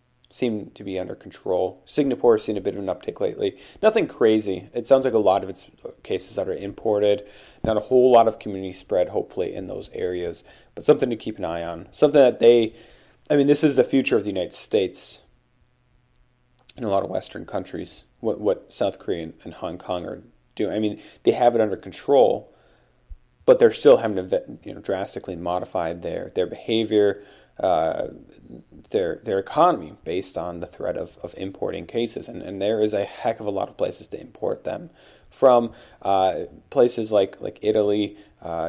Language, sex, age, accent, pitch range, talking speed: English, male, 30-49, American, 95-125 Hz, 195 wpm